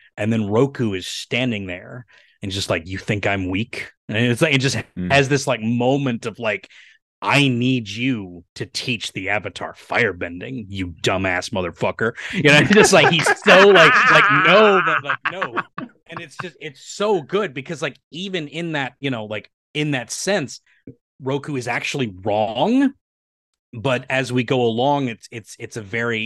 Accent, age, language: American, 30-49, English